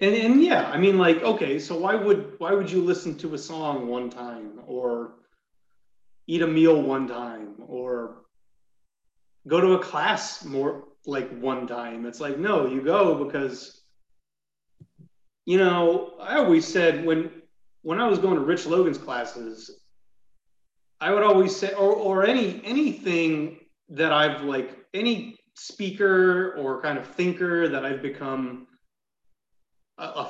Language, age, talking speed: English, 30-49, 150 wpm